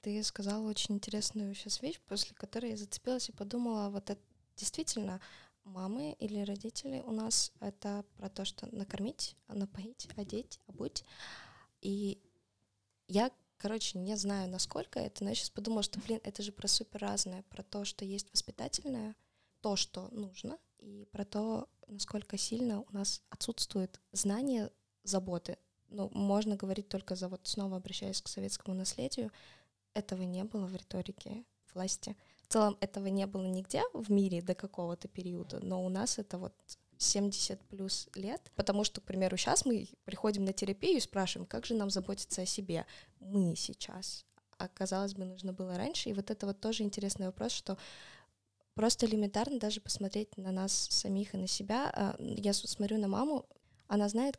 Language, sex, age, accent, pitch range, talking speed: Russian, female, 20-39, native, 190-215 Hz, 165 wpm